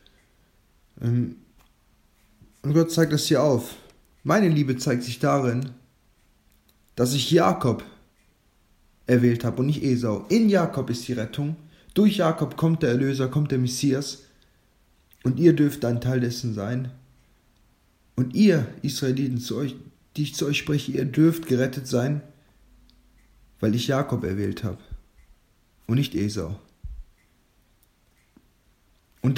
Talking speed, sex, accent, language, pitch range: 125 wpm, male, German, German, 110-150 Hz